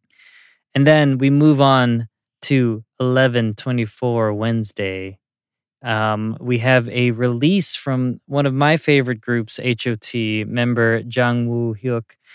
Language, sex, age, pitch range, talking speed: English, male, 20-39, 115-135 Hz, 130 wpm